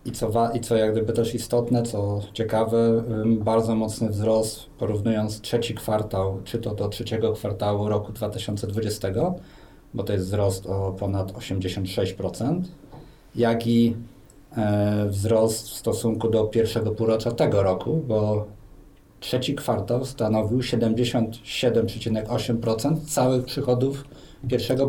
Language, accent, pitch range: Polish, native, 105-130 Hz